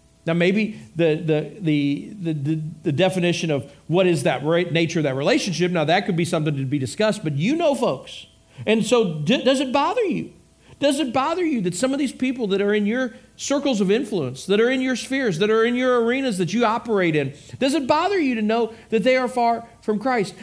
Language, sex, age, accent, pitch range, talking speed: English, male, 50-69, American, 195-280 Hz, 225 wpm